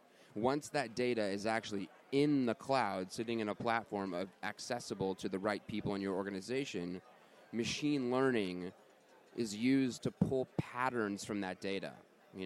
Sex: male